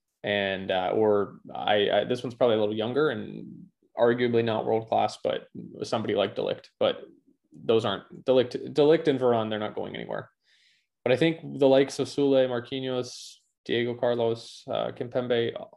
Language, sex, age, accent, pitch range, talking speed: English, male, 20-39, American, 115-145 Hz, 160 wpm